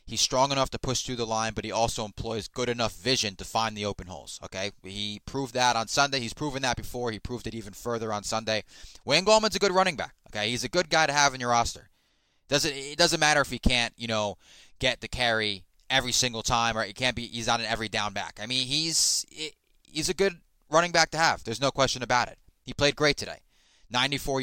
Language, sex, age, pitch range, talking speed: English, male, 20-39, 105-130 Hz, 245 wpm